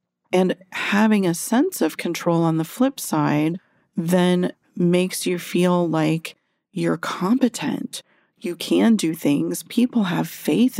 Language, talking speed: English, 135 wpm